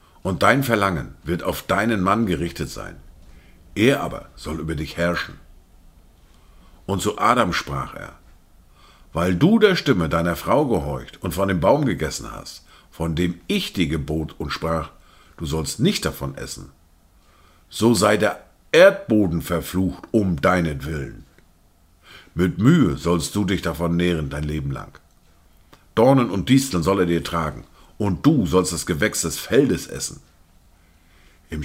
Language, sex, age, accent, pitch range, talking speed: German, male, 60-79, German, 80-105 Hz, 150 wpm